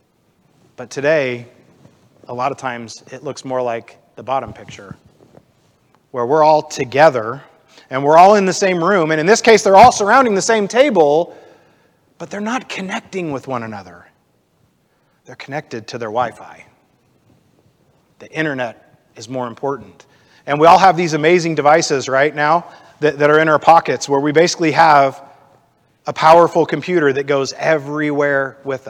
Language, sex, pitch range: English, male, 130-170 Hz